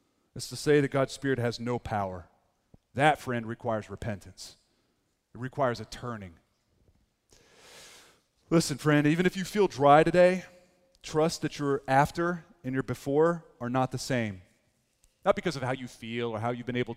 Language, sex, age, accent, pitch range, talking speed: English, male, 30-49, American, 110-170 Hz, 165 wpm